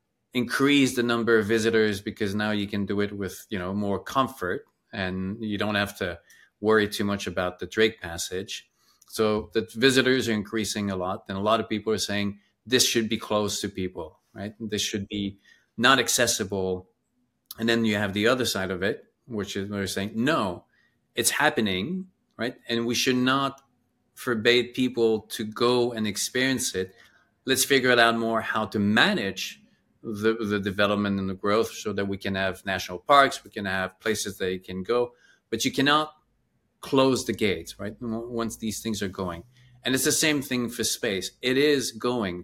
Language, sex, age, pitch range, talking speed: English, male, 30-49, 100-120 Hz, 190 wpm